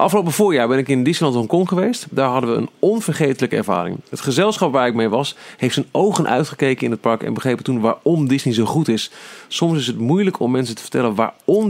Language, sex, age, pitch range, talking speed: Dutch, male, 40-59, 110-145 Hz, 225 wpm